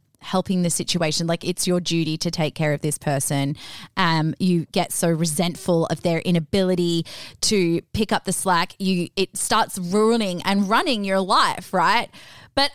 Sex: female